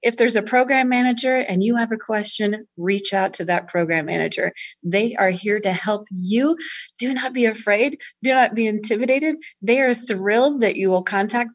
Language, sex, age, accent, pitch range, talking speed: English, female, 30-49, American, 185-245 Hz, 190 wpm